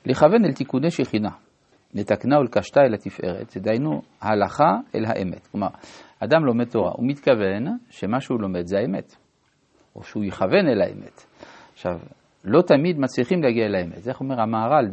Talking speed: 155 wpm